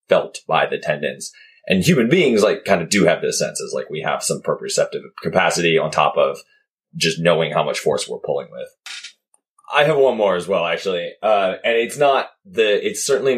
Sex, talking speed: male, 205 wpm